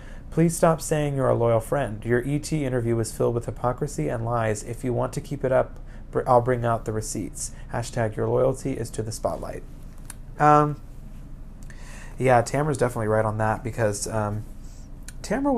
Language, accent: English, American